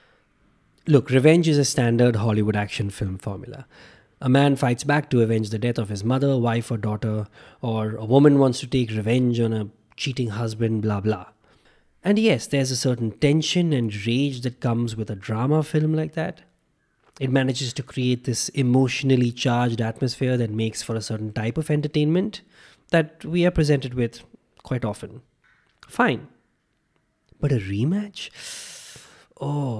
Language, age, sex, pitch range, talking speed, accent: English, 20-39, male, 115-145 Hz, 160 wpm, Indian